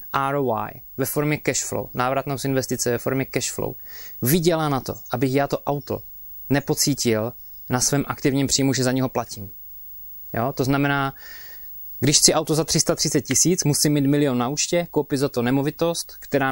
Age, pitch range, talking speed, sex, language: 20-39, 120-140 Hz, 170 wpm, male, Czech